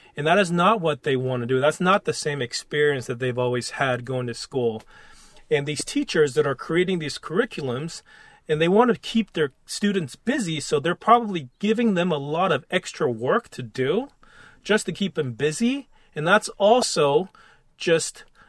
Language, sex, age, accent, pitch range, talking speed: English, male, 30-49, American, 135-195 Hz, 190 wpm